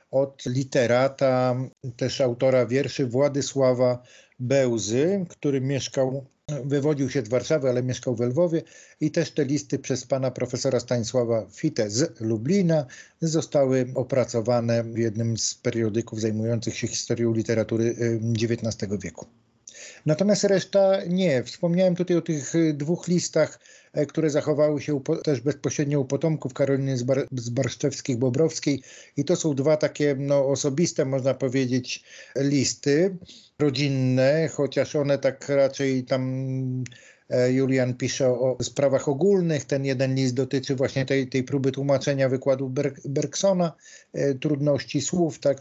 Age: 50-69